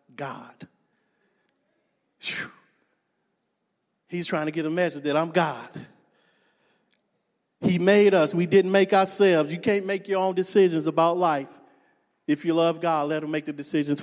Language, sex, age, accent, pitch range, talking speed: English, male, 50-69, American, 165-260 Hz, 145 wpm